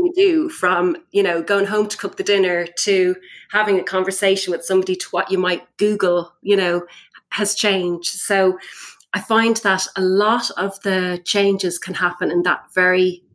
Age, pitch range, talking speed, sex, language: 30-49, 175-205 Hz, 175 wpm, female, English